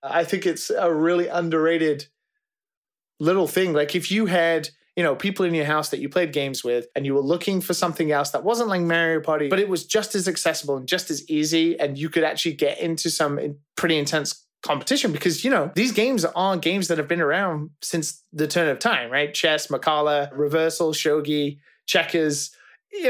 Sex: male